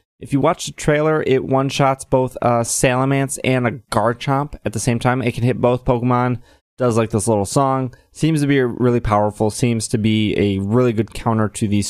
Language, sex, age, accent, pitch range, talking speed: English, male, 20-39, American, 115-135 Hz, 205 wpm